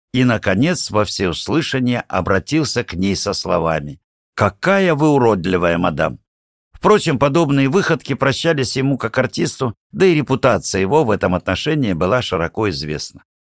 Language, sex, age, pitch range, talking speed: Russian, male, 60-79, 90-135 Hz, 135 wpm